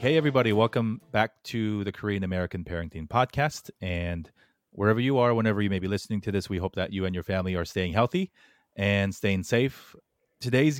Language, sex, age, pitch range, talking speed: English, male, 30-49, 85-100 Hz, 195 wpm